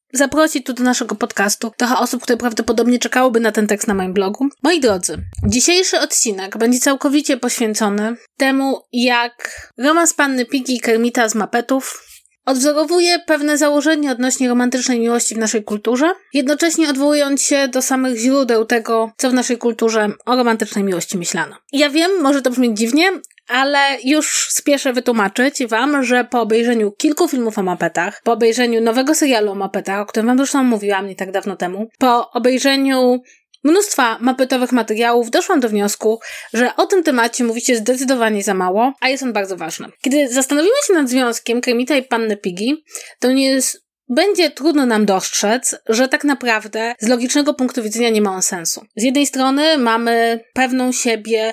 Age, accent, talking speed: 20-39, native, 165 wpm